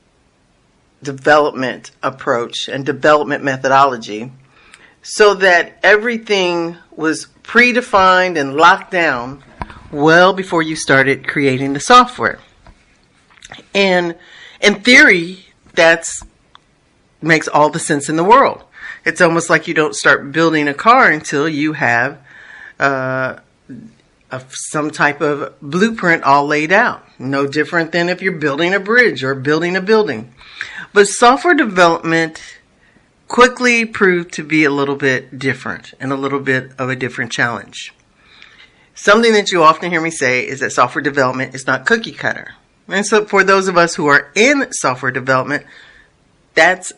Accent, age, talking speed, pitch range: American, 50-69, 140 wpm, 135-180 Hz